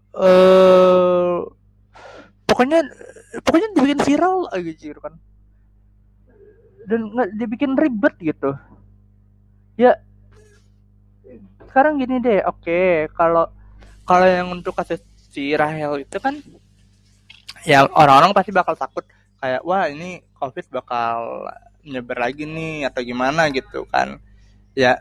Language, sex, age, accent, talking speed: Indonesian, male, 20-39, native, 115 wpm